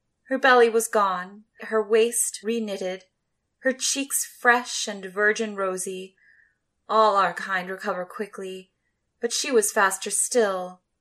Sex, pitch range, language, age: female, 185-235 Hz, English, 20-39